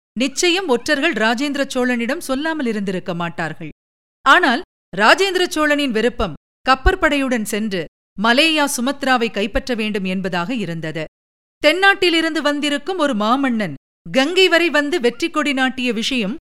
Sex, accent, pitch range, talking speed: female, native, 205-285 Hz, 110 wpm